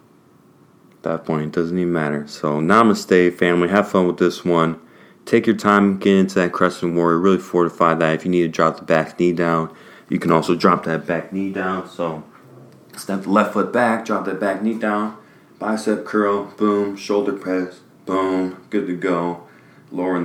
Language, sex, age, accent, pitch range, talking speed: English, male, 20-39, American, 85-100 Hz, 185 wpm